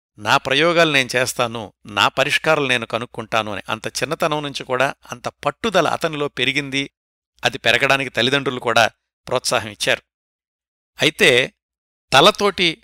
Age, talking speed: 60-79, 110 wpm